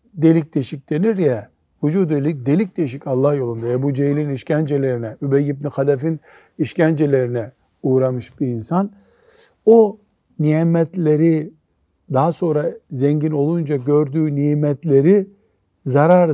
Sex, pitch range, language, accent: male, 135-175 Hz, Turkish, native